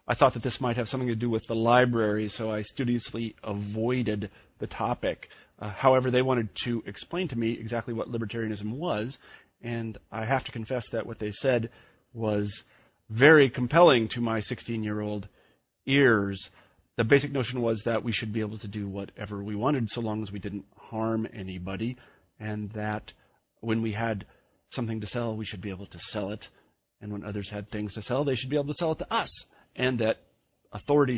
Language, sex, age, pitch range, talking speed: English, male, 40-59, 105-120 Hz, 195 wpm